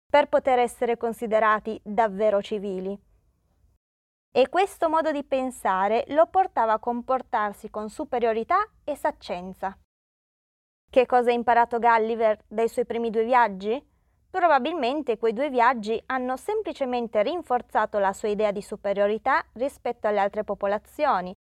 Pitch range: 210-260 Hz